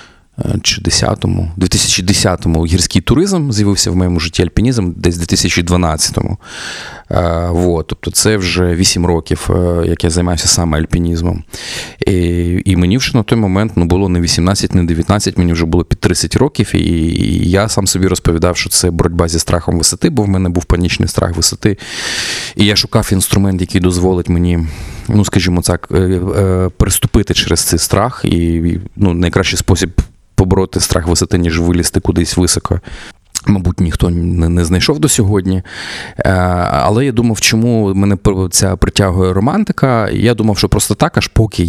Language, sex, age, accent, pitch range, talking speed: Ukrainian, male, 20-39, native, 85-100 Hz, 155 wpm